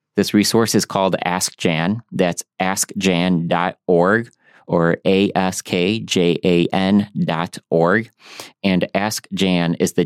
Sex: male